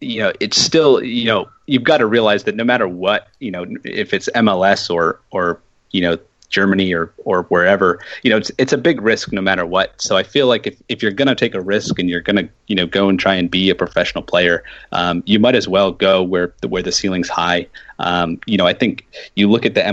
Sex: male